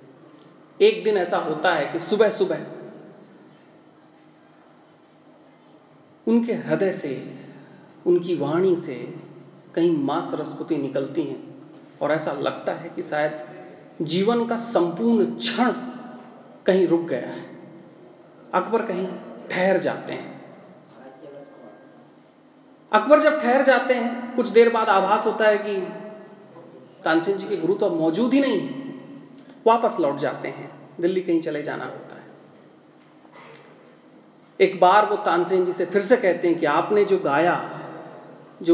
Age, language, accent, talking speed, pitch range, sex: 30-49, Hindi, native, 130 wpm, 170-275 Hz, male